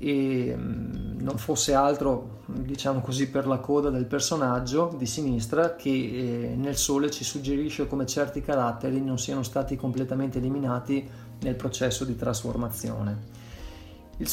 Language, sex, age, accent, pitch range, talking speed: Italian, male, 30-49, native, 125-150 Hz, 130 wpm